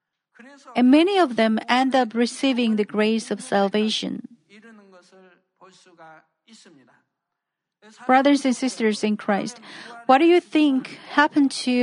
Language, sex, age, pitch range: Korean, female, 40-59, 215-265 Hz